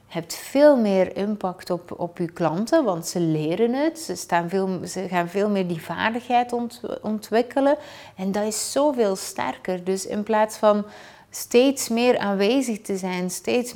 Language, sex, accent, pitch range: Dutch, female, Dutch, 180-215 Hz